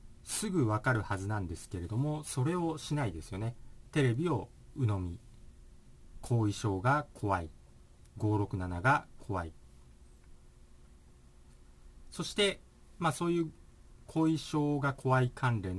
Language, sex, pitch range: Japanese, male, 95-145 Hz